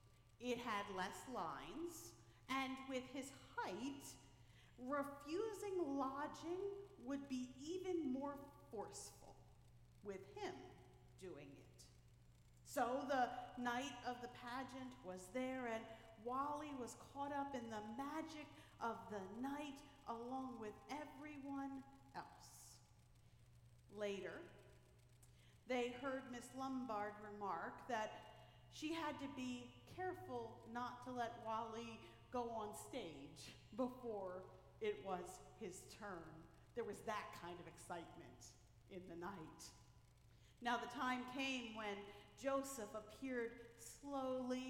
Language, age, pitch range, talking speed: English, 50-69, 185-265 Hz, 110 wpm